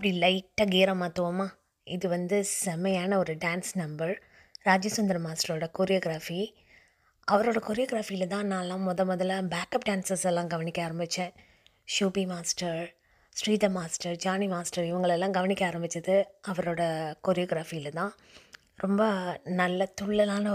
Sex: female